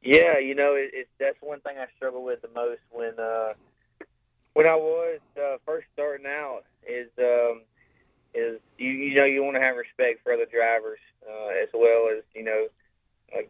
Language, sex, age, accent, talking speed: English, male, 20-39, American, 190 wpm